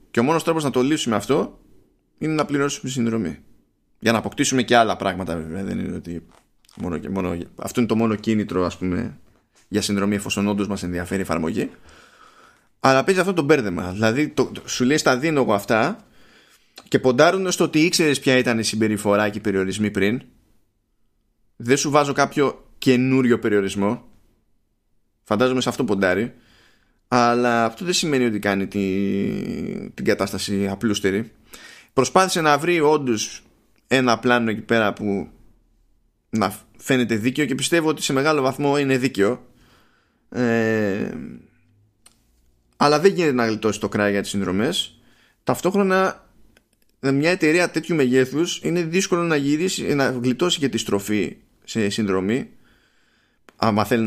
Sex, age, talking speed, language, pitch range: male, 20-39, 150 wpm, Greek, 100-140 Hz